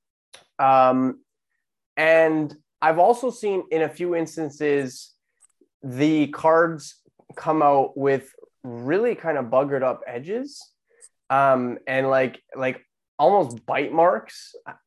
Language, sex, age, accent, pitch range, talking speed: English, male, 20-39, American, 130-200 Hz, 110 wpm